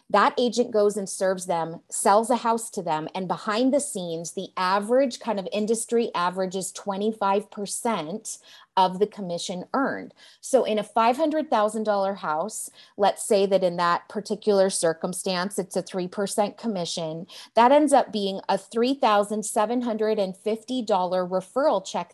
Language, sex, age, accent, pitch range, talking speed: English, female, 30-49, American, 180-235 Hz, 135 wpm